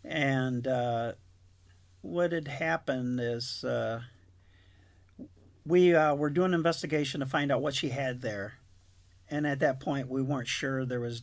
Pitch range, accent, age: 115-150 Hz, American, 50-69